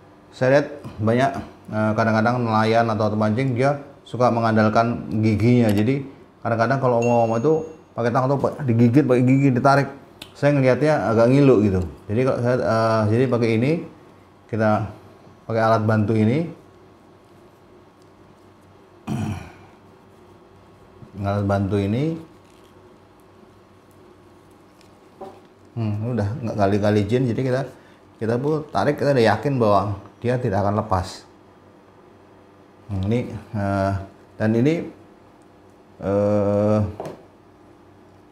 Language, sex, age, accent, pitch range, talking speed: Indonesian, male, 30-49, native, 100-125 Hz, 105 wpm